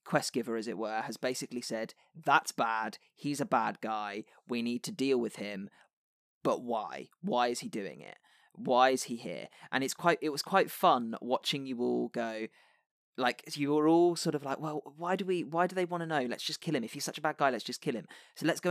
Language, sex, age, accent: English, male, 20-39, British